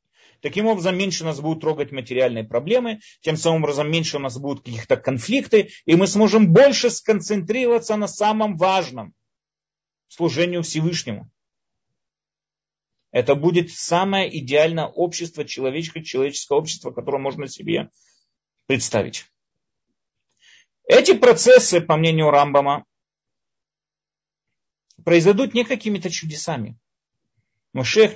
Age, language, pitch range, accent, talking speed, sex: 30-49, Russian, 130-185 Hz, native, 110 wpm, male